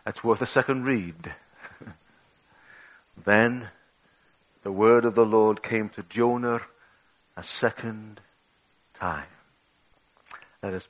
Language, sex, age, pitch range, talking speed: English, male, 50-69, 105-125 Hz, 105 wpm